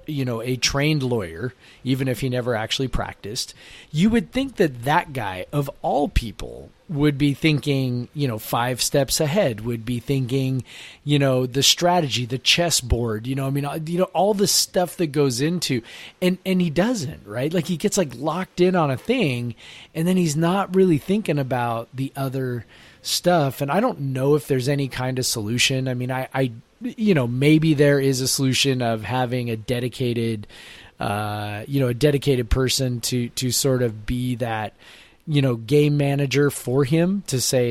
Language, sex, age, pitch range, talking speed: English, male, 30-49, 120-150 Hz, 190 wpm